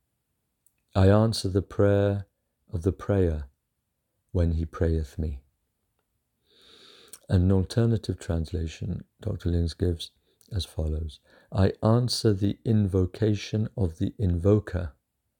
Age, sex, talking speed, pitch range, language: 50-69, male, 105 wpm, 85-100 Hz, English